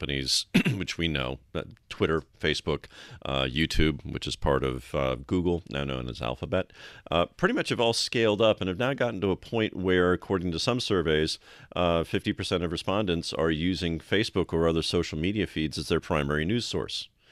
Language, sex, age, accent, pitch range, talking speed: English, male, 40-59, American, 80-100 Hz, 185 wpm